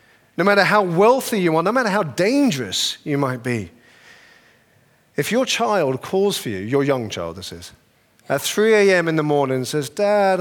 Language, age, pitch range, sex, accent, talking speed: English, 40-59, 140-205 Hz, male, British, 185 wpm